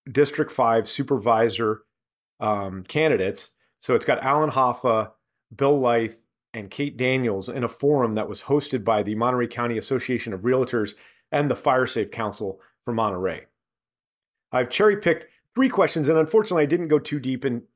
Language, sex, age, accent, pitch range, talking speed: English, male, 40-59, American, 115-140 Hz, 160 wpm